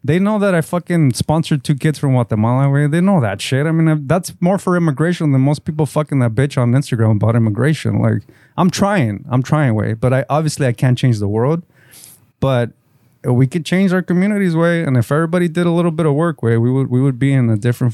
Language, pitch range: English, 120-155 Hz